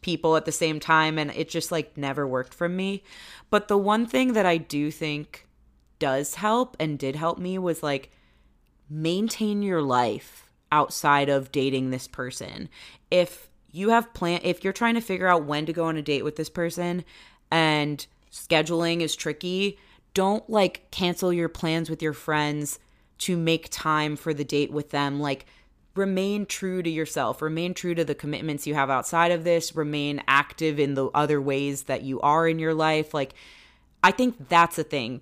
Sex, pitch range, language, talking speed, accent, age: female, 145-175 Hz, English, 185 wpm, American, 20-39